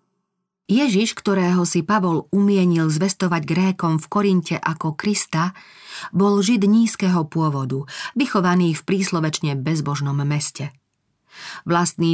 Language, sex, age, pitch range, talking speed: Slovak, female, 40-59, 150-190 Hz, 105 wpm